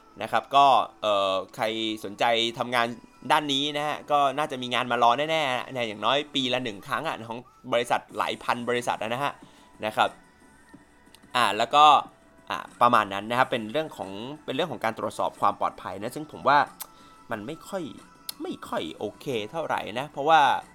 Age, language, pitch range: 20-39, English, 115-145 Hz